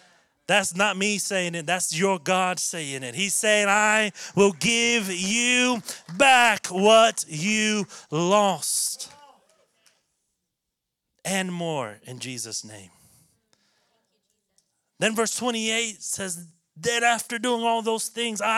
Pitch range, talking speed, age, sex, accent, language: 180-230 Hz, 115 wpm, 30-49, male, American, English